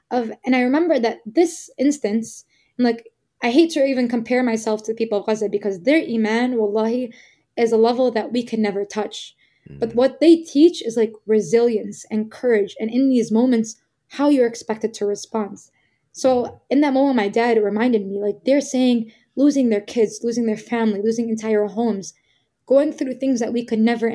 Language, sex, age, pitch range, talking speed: English, female, 10-29, 215-255 Hz, 190 wpm